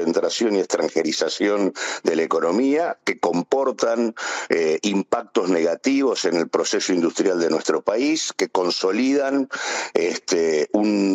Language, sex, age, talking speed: Spanish, male, 50-69, 115 wpm